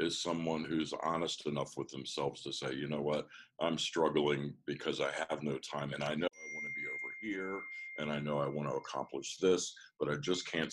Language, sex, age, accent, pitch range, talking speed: English, male, 60-79, American, 75-85 Hz, 225 wpm